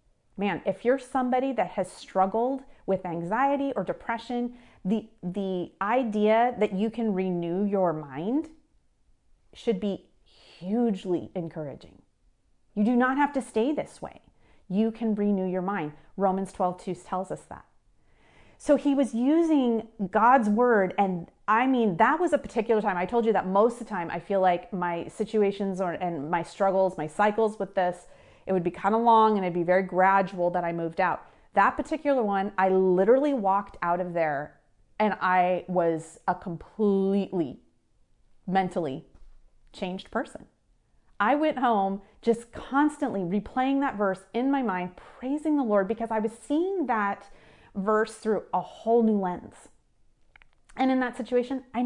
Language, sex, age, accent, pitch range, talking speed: English, female, 30-49, American, 185-245 Hz, 160 wpm